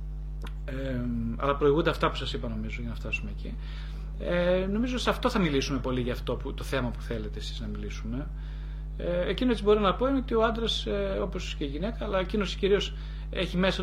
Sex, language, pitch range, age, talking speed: male, Greek, 135-160 Hz, 30-49, 215 wpm